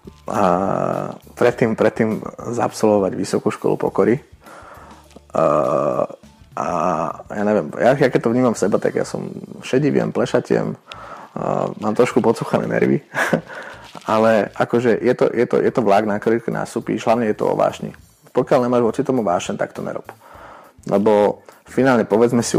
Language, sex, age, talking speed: Slovak, male, 30-49, 145 wpm